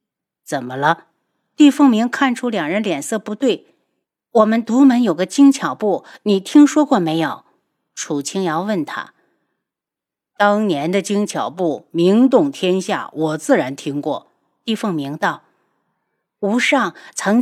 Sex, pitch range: female, 185-265 Hz